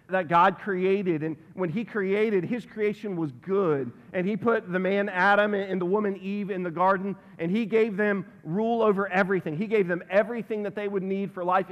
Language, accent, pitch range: English, American, 175-210 Hz